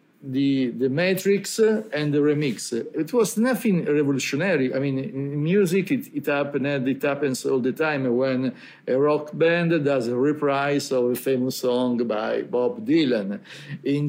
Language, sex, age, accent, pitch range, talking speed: English, male, 50-69, Italian, 130-160 Hz, 160 wpm